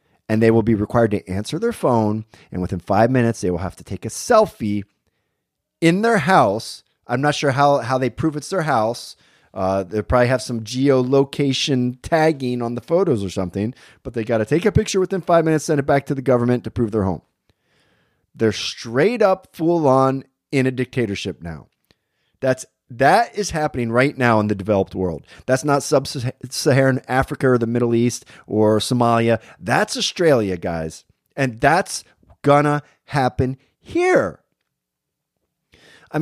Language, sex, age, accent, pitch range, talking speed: English, male, 30-49, American, 110-150 Hz, 170 wpm